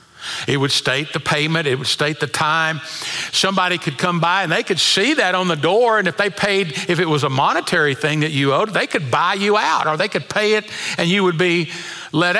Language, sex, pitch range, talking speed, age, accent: English, male, 130-185 Hz, 240 wpm, 50-69, American